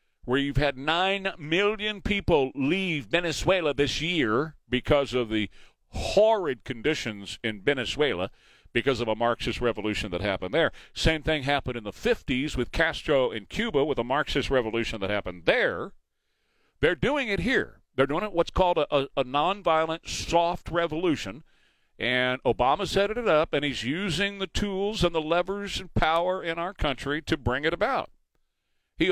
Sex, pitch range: male, 135-195 Hz